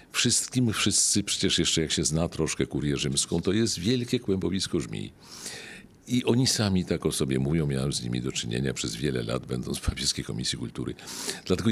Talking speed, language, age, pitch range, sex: 190 wpm, Polish, 50-69, 75-115 Hz, male